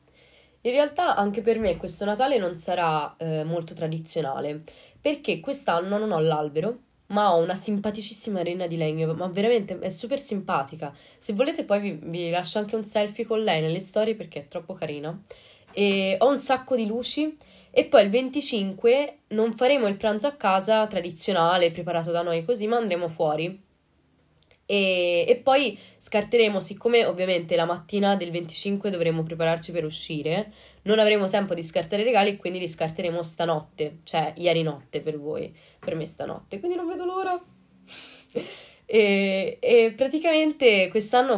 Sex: female